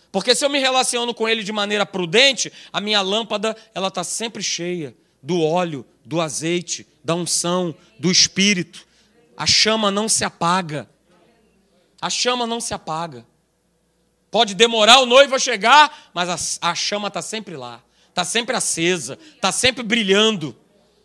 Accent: Brazilian